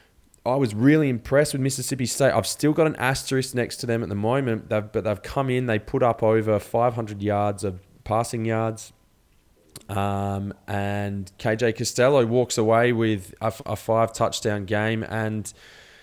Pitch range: 105-125 Hz